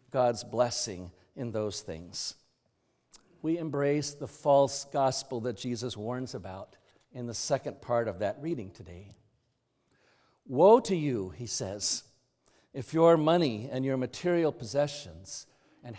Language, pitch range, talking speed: English, 120-155 Hz, 130 wpm